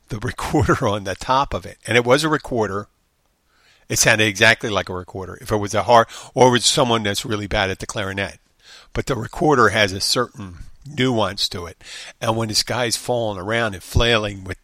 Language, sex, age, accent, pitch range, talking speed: English, male, 50-69, American, 100-125 Hz, 205 wpm